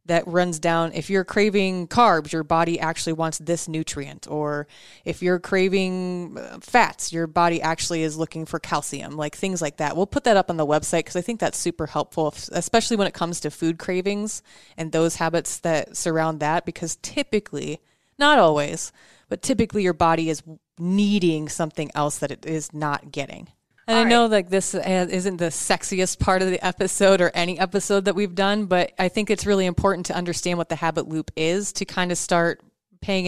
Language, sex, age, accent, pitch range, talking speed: English, female, 20-39, American, 160-185 Hz, 195 wpm